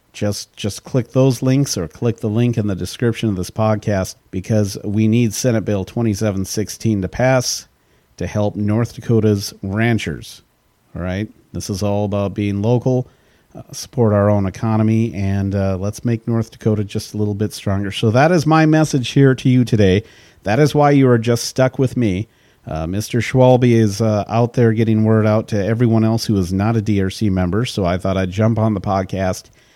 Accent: American